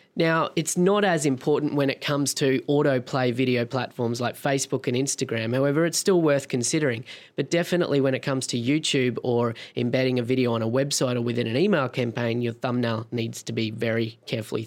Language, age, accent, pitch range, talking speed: English, 20-39, Australian, 130-155 Hz, 190 wpm